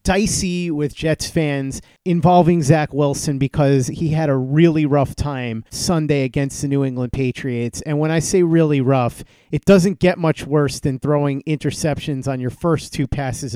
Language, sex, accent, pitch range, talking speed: English, male, American, 140-170 Hz, 175 wpm